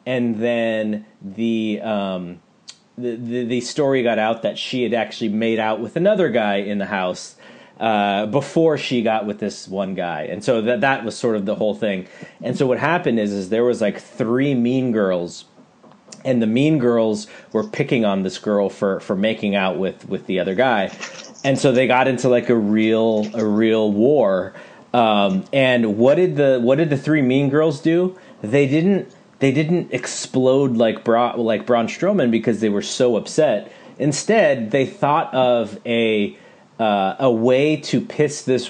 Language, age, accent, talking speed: English, 30-49, American, 185 wpm